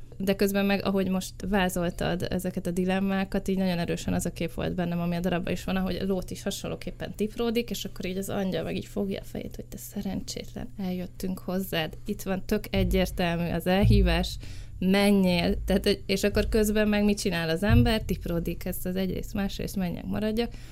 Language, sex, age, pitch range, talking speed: Hungarian, female, 20-39, 165-190 Hz, 190 wpm